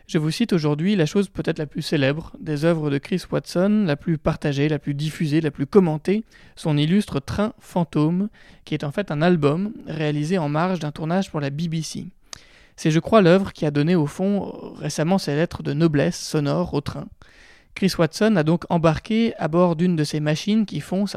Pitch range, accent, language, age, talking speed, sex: 155-195 Hz, French, French, 20-39, 205 wpm, male